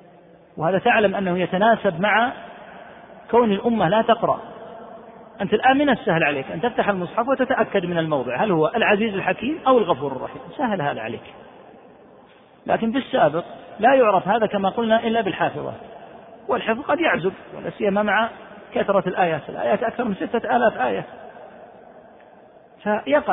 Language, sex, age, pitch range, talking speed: Arabic, male, 40-59, 175-230 Hz, 140 wpm